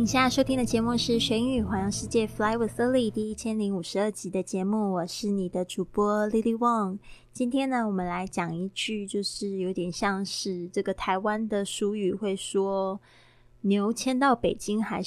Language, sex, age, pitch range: Chinese, female, 20-39, 185-230 Hz